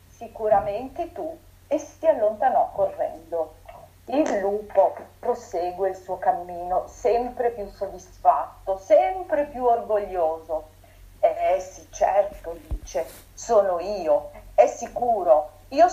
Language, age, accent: Italian, 40-59, native